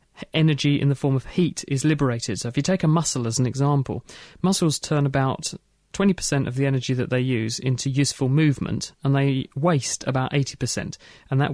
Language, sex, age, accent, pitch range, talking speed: English, male, 30-49, British, 130-150 Hz, 195 wpm